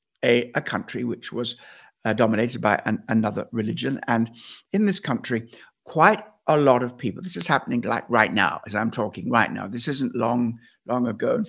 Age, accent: 60-79, British